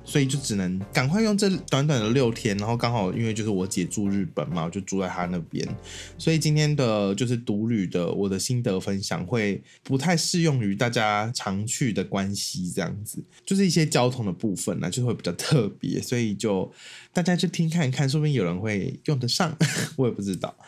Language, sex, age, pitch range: Chinese, male, 20-39, 95-135 Hz